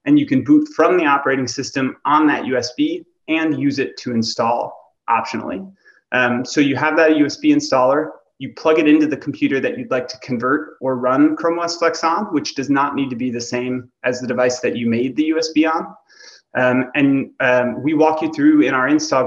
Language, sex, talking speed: English, male, 210 wpm